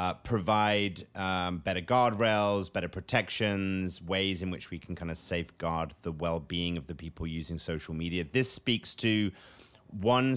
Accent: British